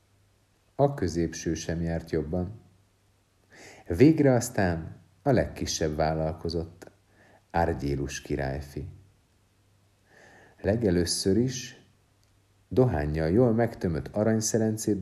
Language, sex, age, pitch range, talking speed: Hungarian, male, 50-69, 90-115 Hz, 70 wpm